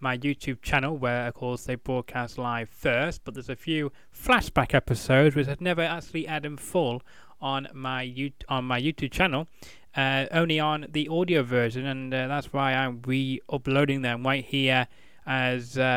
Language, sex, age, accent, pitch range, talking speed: English, male, 20-39, British, 120-140 Hz, 175 wpm